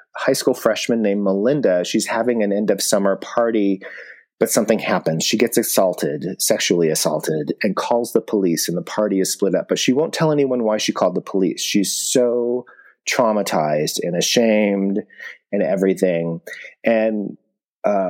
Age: 30-49